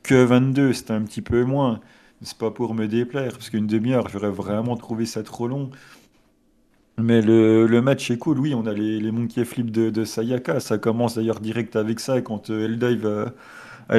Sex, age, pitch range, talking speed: male, 30-49, 110-120 Hz, 210 wpm